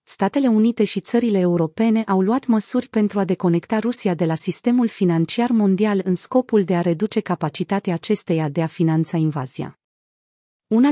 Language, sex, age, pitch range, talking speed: Romanian, female, 30-49, 175-225 Hz, 160 wpm